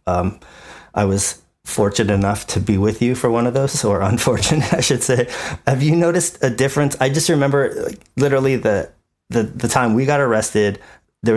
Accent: American